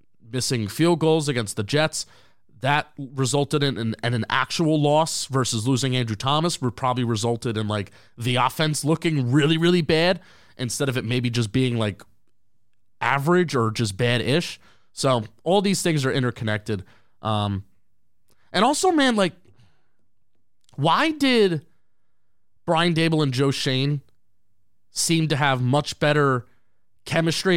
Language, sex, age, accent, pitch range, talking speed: English, male, 30-49, American, 115-155 Hz, 140 wpm